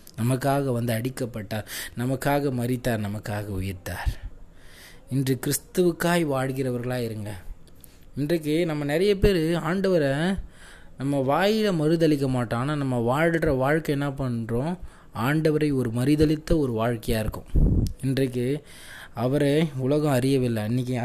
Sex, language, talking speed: male, Tamil, 105 wpm